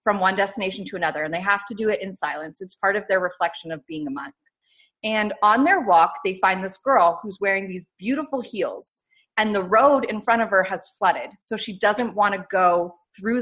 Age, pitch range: 30-49, 185-225 Hz